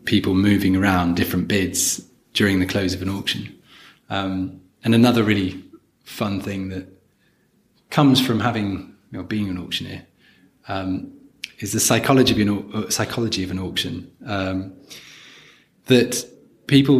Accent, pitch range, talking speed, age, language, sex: British, 95-115 Hz, 140 wpm, 20-39, English, male